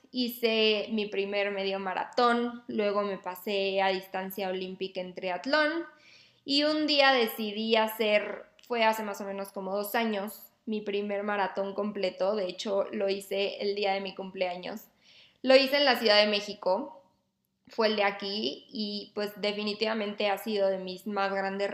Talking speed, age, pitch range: 165 wpm, 20-39, 195-220 Hz